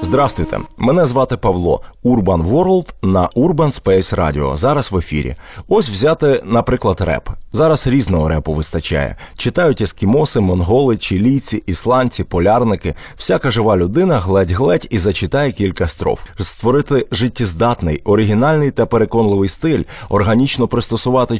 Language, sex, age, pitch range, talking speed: Ukrainian, male, 30-49, 100-135 Hz, 120 wpm